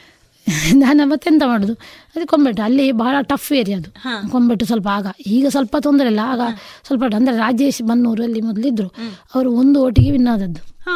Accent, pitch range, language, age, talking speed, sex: native, 230-280 Hz, Kannada, 20-39, 160 wpm, female